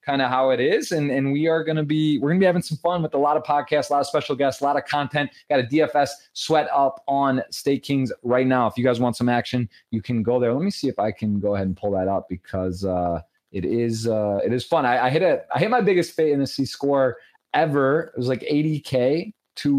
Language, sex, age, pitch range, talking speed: English, male, 20-39, 105-140 Hz, 275 wpm